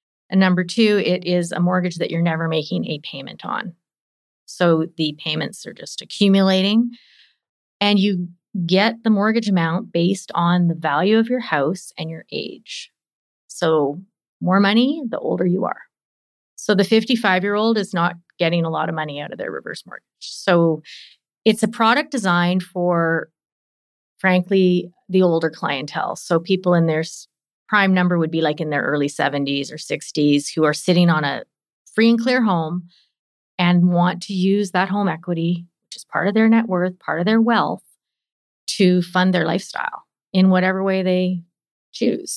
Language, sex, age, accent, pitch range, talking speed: English, female, 30-49, American, 165-200 Hz, 170 wpm